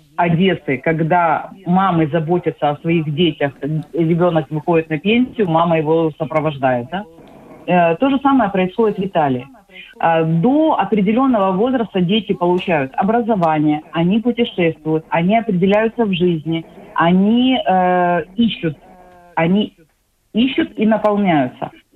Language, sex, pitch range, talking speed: Russian, female, 160-210 Hz, 100 wpm